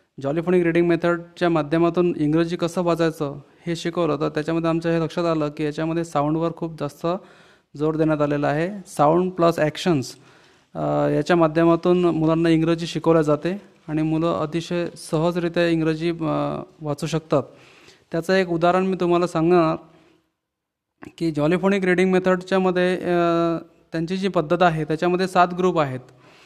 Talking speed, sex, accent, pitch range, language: 130 wpm, male, native, 160-185 Hz, Marathi